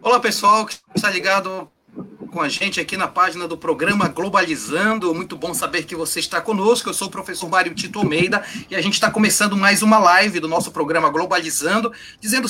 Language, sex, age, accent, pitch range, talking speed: Portuguese, male, 30-49, Brazilian, 190-235 Hz, 190 wpm